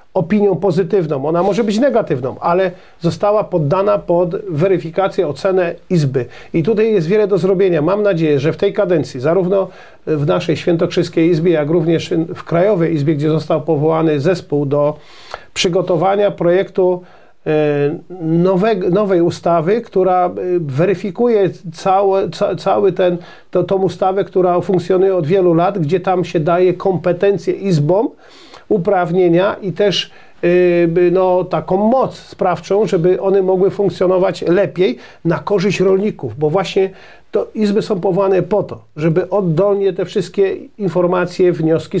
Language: Polish